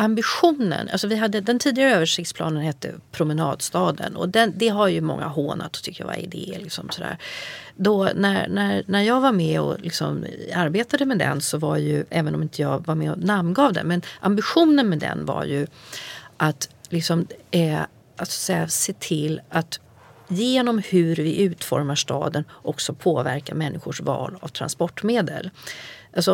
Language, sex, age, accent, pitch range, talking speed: Swedish, female, 40-59, native, 155-215 Hz, 175 wpm